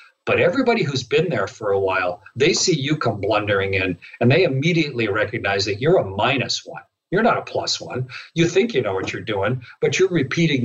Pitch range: 110-145 Hz